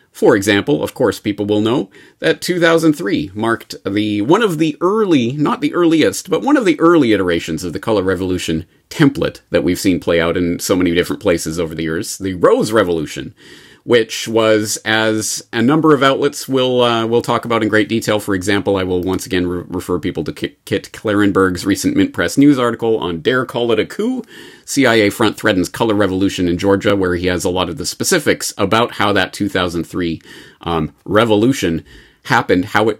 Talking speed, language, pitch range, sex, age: 195 wpm, English, 90-120 Hz, male, 30-49